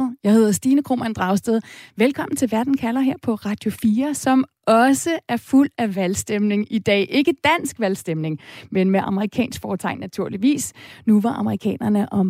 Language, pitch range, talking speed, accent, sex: Danish, 195-260 Hz, 160 wpm, native, female